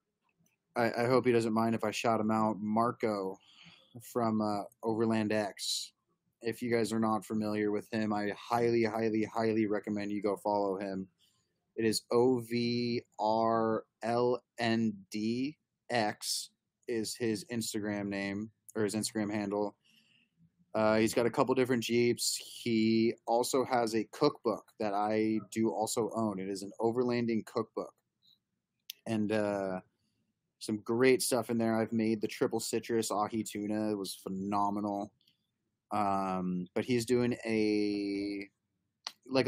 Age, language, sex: 20-39, English, male